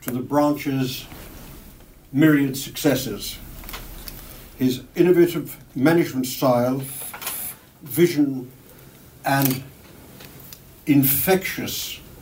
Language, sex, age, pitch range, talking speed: English, male, 60-79, 130-155 Hz, 60 wpm